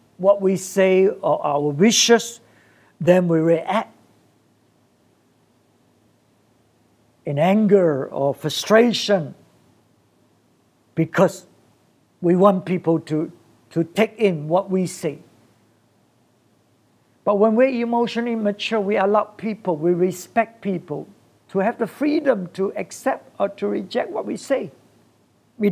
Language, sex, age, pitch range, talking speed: English, male, 60-79, 140-195 Hz, 110 wpm